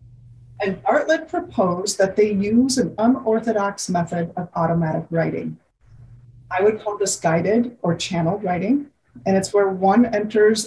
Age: 40-59